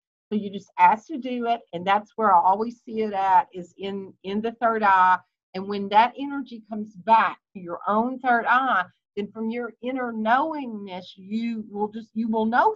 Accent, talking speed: American, 200 wpm